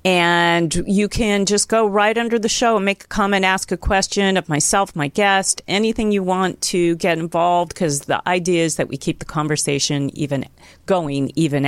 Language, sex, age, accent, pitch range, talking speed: English, female, 40-59, American, 150-210 Hz, 195 wpm